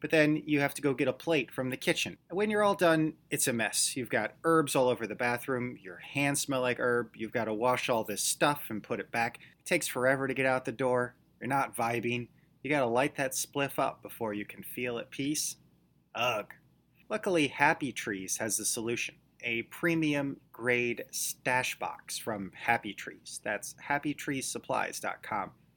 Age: 30-49